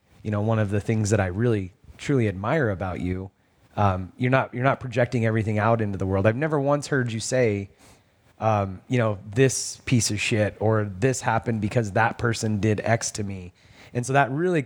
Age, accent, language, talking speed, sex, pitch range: 30-49, American, English, 210 wpm, male, 95-120 Hz